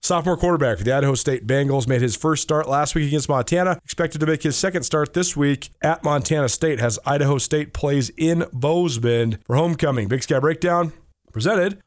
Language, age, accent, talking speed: English, 30-49, American, 190 wpm